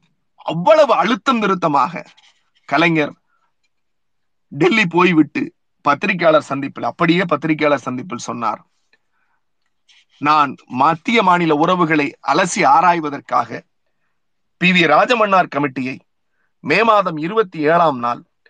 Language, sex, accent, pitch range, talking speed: Tamil, male, native, 165-220 Hz, 90 wpm